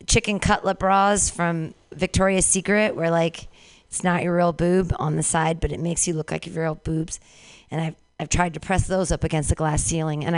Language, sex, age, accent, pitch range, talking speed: English, female, 40-59, American, 170-235 Hz, 220 wpm